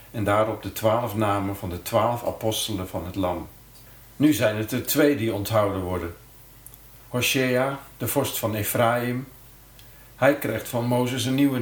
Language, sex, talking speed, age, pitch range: Dutch, male, 160 wpm, 50-69, 105-125 Hz